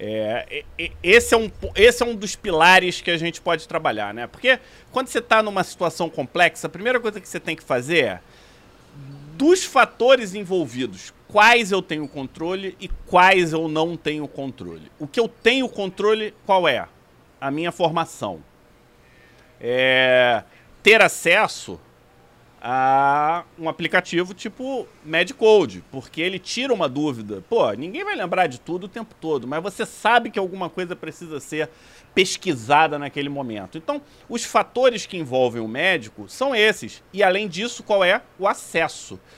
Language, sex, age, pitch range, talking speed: Portuguese, male, 40-59, 145-220 Hz, 150 wpm